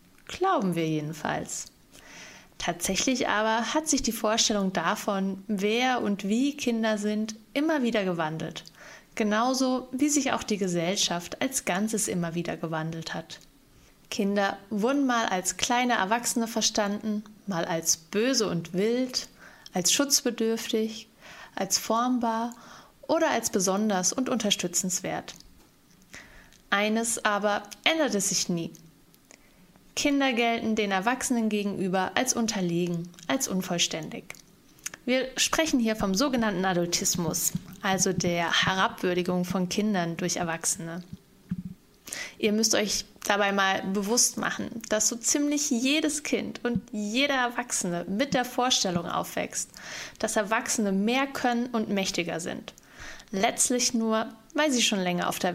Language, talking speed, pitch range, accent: German, 120 wpm, 185-245 Hz, German